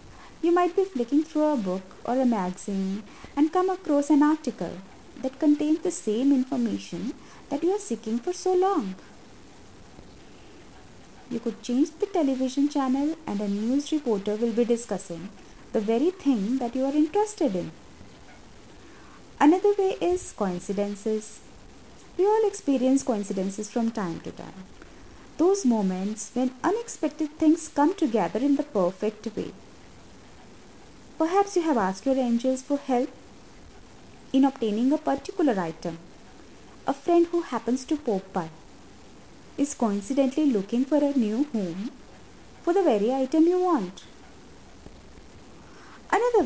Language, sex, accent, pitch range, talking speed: English, female, Indian, 215-315 Hz, 135 wpm